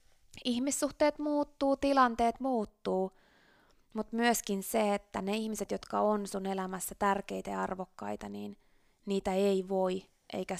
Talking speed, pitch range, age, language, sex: 125 wpm, 180-205 Hz, 20-39, Finnish, female